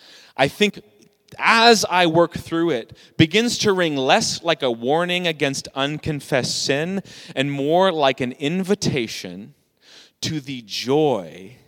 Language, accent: English, American